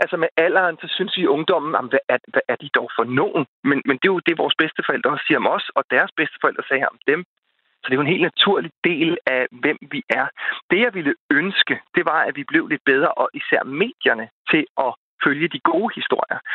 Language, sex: Danish, male